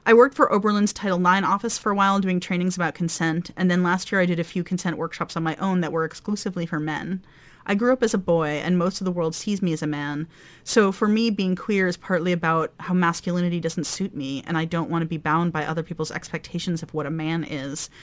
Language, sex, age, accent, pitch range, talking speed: English, female, 30-49, American, 160-190 Hz, 255 wpm